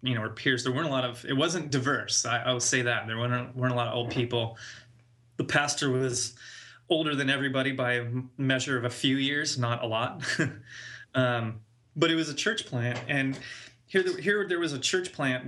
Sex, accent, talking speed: male, American, 215 wpm